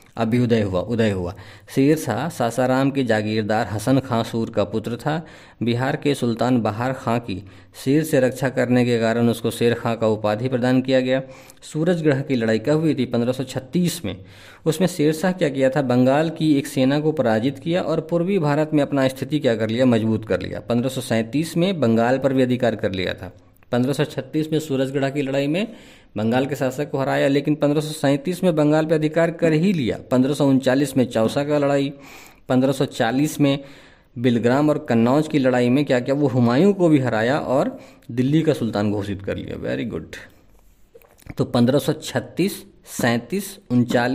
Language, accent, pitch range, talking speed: Hindi, native, 115-150 Hz, 175 wpm